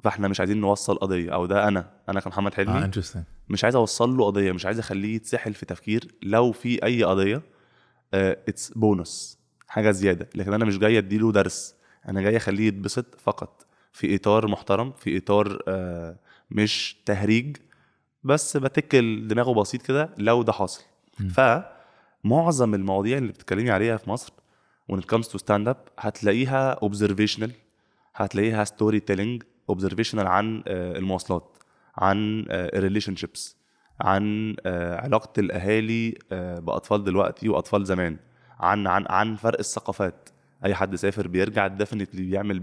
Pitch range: 95-115 Hz